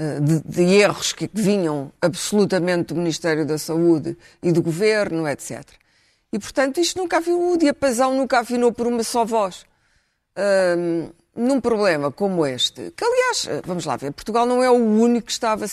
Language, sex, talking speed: Portuguese, female, 170 wpm